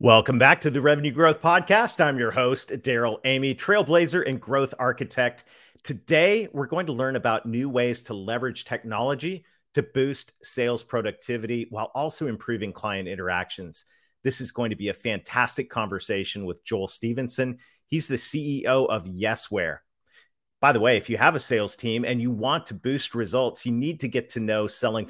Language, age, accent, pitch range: English, 40-59, American, 110-135 Hz